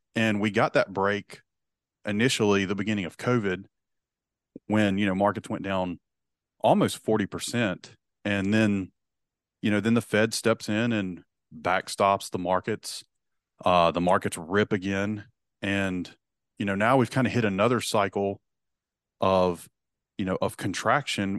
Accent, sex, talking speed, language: American, male, 145 wpm, English